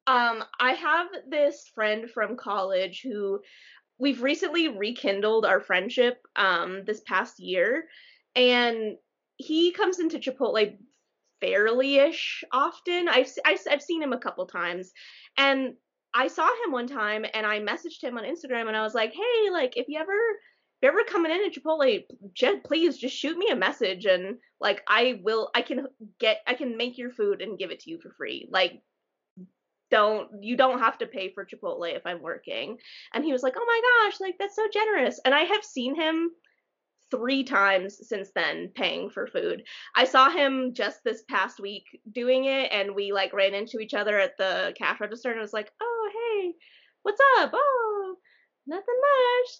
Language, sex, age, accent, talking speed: English, female, 20-39, American, 180 wpm